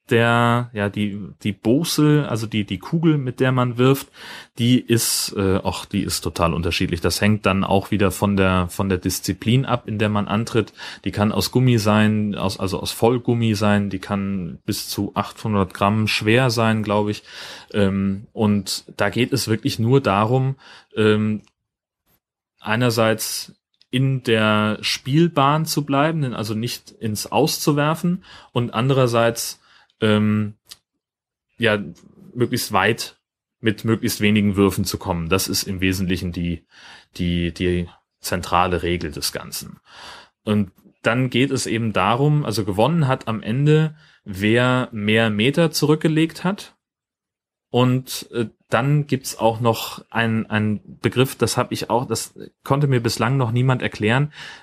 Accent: German